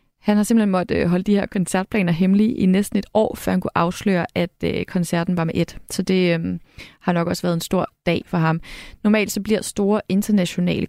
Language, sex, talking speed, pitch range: Danish, female, 215 wpm, 175-220 Hz